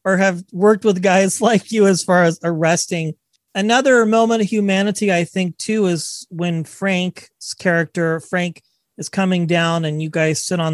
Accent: American